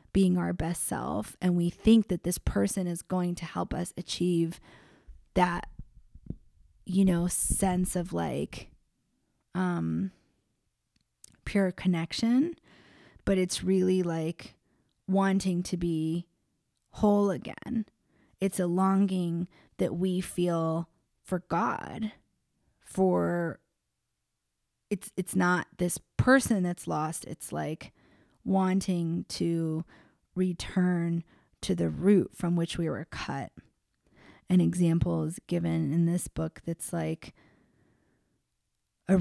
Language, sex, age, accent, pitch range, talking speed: English, female, 20-39, American, 165-190 Hz, 110 wpm